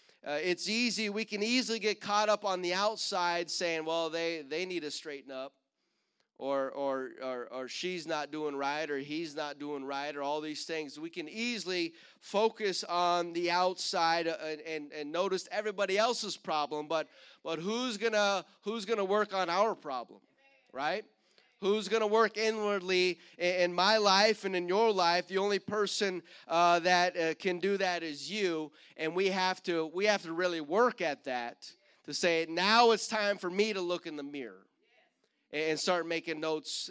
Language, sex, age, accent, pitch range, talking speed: English, male, 30-49, American, 155-200 Hz, 185 wpm